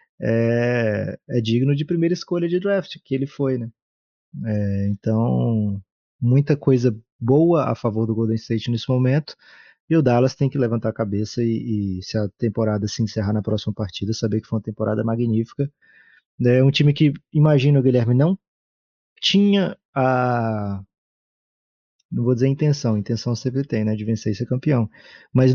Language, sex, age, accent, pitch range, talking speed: Portuguese, male, 20-39, Brazilian, 110-135 Hz, 175 wpm